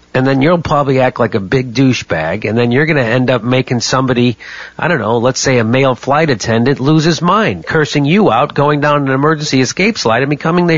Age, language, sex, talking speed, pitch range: 40-59, English, male, 235 wpm, 115-175 Hz